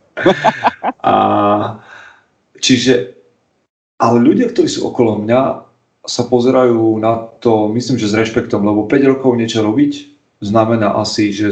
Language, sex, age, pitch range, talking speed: Slovak, male, 40-59, 105-120 Hz, 125 wpm